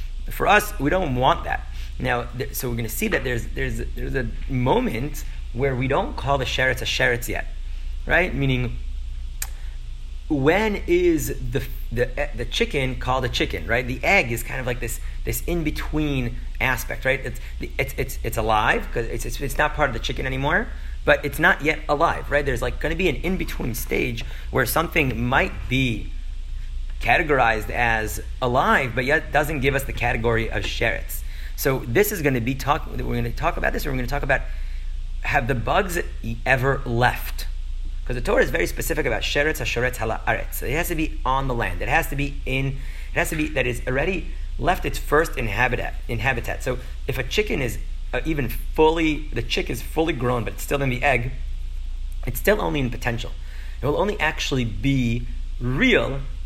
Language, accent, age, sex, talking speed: English, American, 30-49, male, 200 wpm